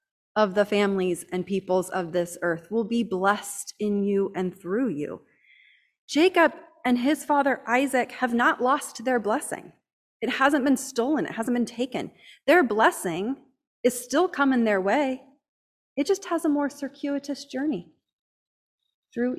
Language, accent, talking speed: English, American, 150 wpm